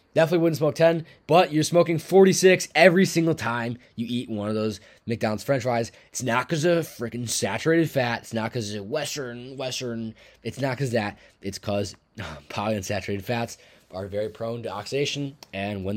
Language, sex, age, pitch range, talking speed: English, male, 20-39, 100-140 Hz, 175 wpm